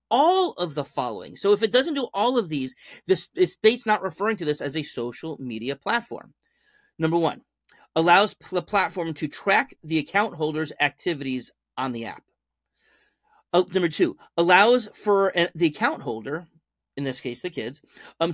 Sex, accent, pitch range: male, American, 150-220 Hz